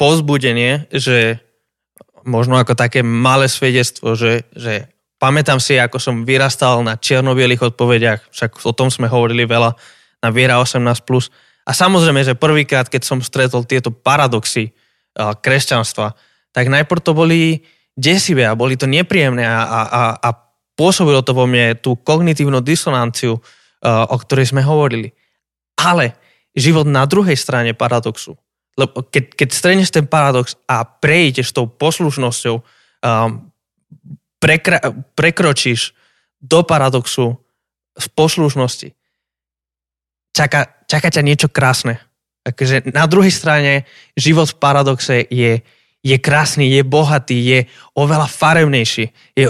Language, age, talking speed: Slovak, 20-39, 125 wpm